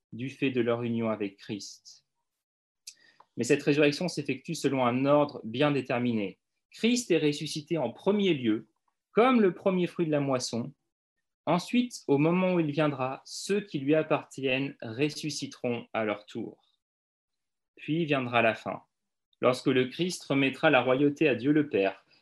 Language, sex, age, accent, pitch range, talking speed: French, male, 30-49, French, 120-155 Hz, 155 wpm